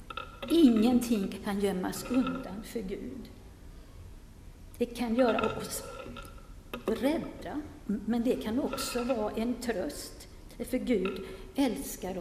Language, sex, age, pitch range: Swedish, female, 50-69, 210-255 Hz